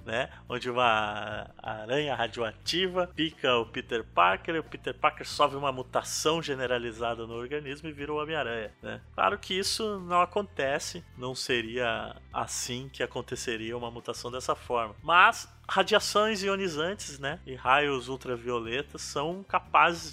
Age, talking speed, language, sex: 20-39, 145 wpm, Portuguese, male